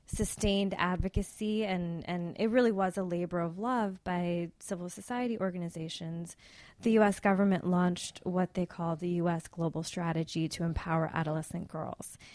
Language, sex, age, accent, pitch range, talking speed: English, female, 20-39, American, 165-200 Hz, 145 wpm